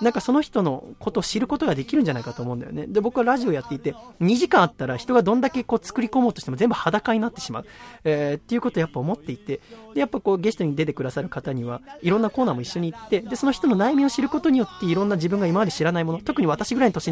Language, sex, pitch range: Japanese, male, 140-225 Hz